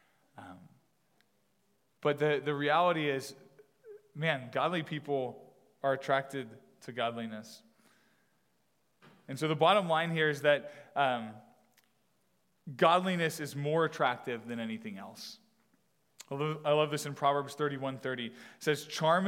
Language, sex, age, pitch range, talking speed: English, male, 20-39, 125-150 Hz, 130 wpm